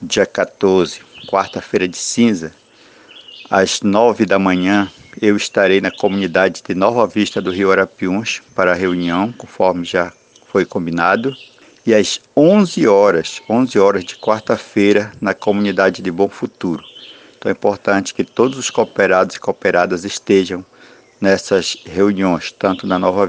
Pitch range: 95-120 Hz